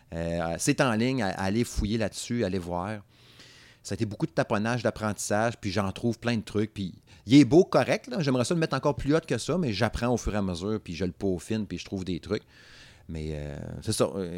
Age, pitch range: 30-49, 95-120 Hz